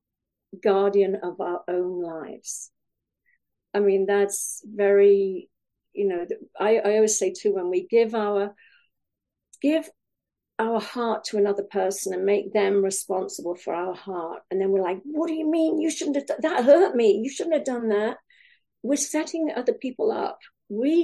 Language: English